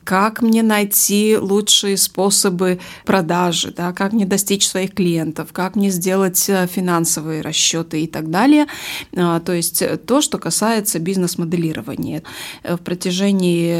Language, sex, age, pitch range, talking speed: Russian, female, 20-39, 170-210 Hz, 120 wpm